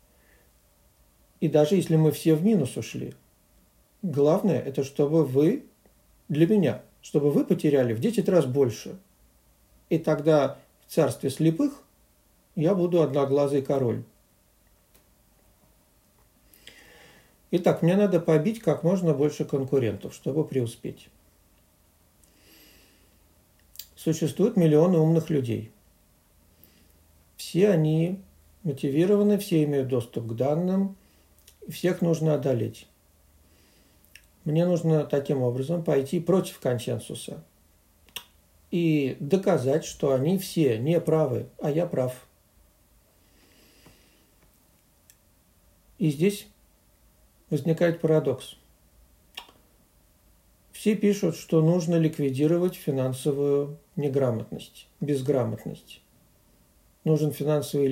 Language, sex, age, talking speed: Russian, male, 50-69, 90 wpm